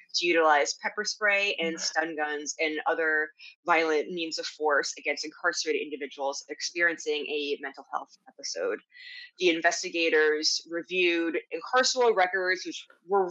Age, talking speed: 20-39, 125 wpm